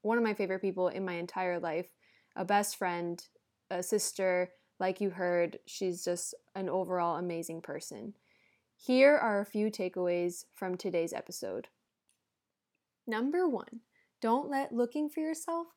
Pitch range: 195-240 Hz